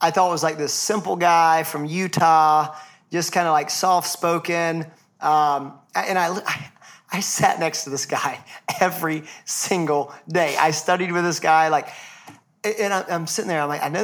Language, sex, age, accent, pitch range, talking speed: English, male, 40-59, American, 150-175 Hz, 185 wpm